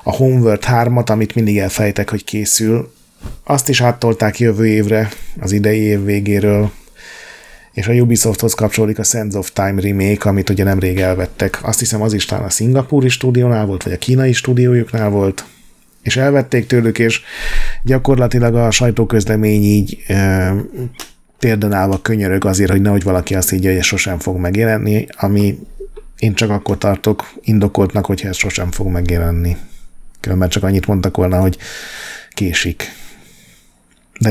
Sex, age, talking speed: male, 30-49, 150 wpm